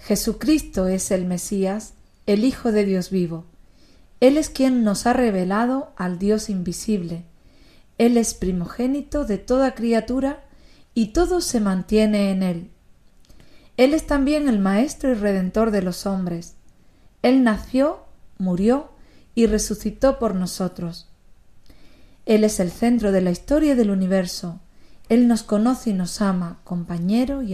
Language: Spanish